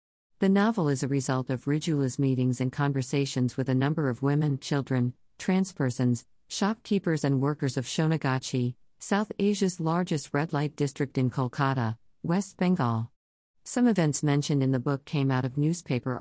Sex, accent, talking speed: female, American, 160 wpm